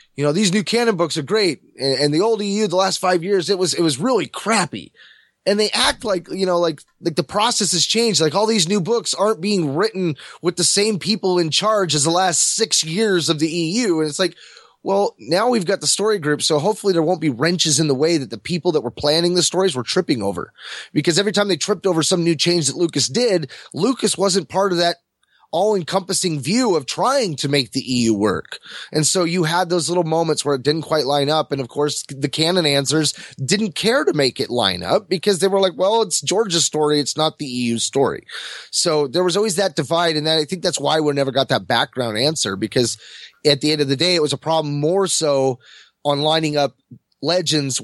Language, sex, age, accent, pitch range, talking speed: English, male, 20-39, American, 145-190 Hz, 235 wpm